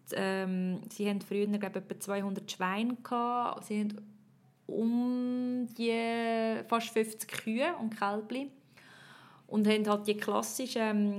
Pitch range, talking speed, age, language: 190-215 Hz, 120 wpm, 20-39, German